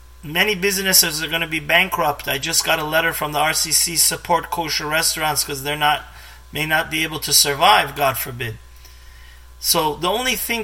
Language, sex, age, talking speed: English, male, 30-49, 185 wpm